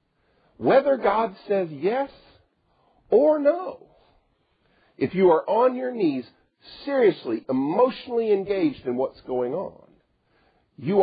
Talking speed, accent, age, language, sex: 110 wpm, American, 50-69, English, male